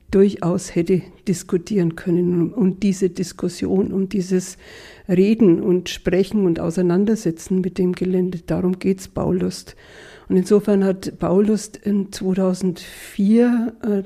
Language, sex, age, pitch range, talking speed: German, female, 60-79, 180-195 Hz, 120 wpm